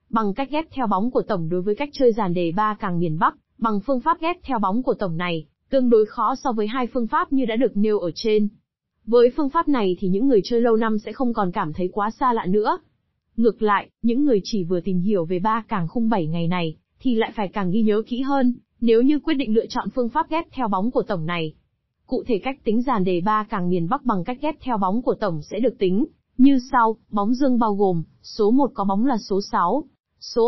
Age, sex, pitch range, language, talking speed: 20-39, female, 200-250 Hz, Vietnamese, 255 wpm